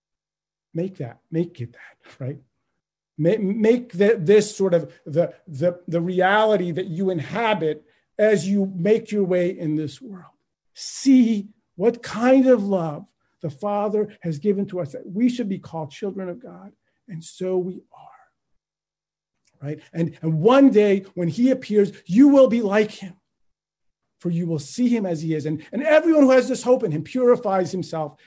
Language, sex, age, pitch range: English, male, 50-69, 150-215 Hz